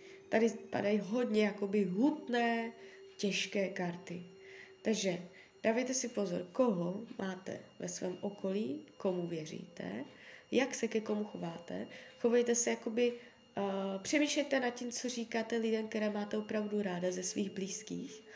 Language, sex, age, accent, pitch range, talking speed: Czech, female, 20-39, native, 190-280 Hz, 130 wpm